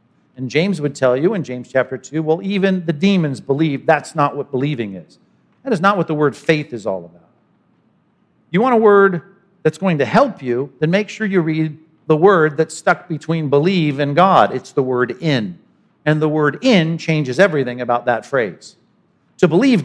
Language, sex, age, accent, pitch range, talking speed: English, male, 50-69, American, 140-190 Hz, 200 wpm